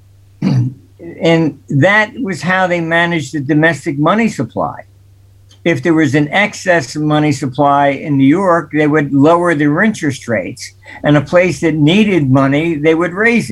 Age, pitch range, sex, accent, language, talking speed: 60-79, 125-175 Hz, male, American, English, 155 wpm